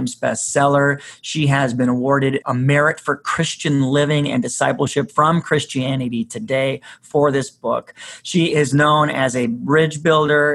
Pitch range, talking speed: 125-145 Hz, 140 wpm